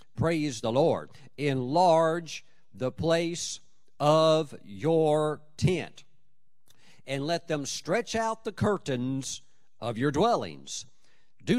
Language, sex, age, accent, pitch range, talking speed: English, male, 50-69, American, 130-160 Hz, 105 wpm